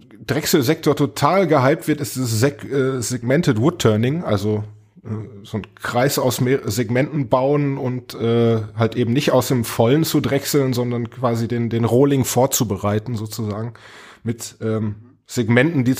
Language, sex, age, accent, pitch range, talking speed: German, male, 20-39, German, 115-145 Hz, 140 wpm